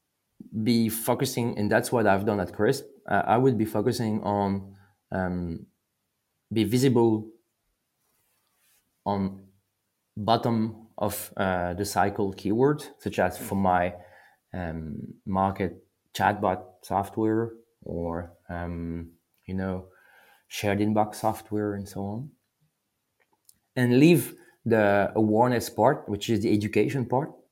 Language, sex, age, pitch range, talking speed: English, male, 30-49, 95-115 Hz, 115 wpm